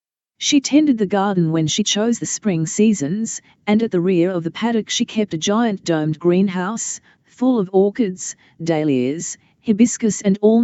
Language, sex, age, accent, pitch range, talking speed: English, female, 40-59, Australian, 165-220 Hz, 170 wpm